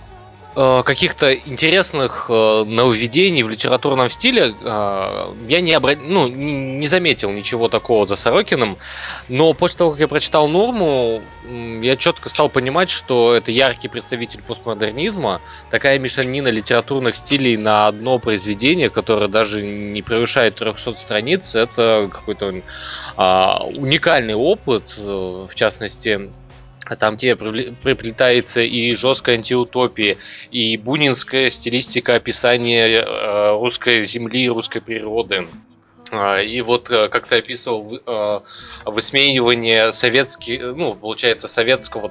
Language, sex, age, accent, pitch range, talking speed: Russian, male, 20-39, native, 105-130 Hz, 110 wpm